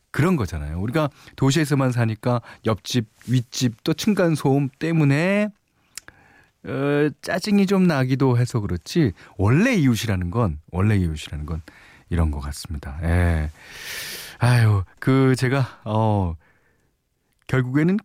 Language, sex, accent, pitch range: Korean, male, native, 95-145 Hz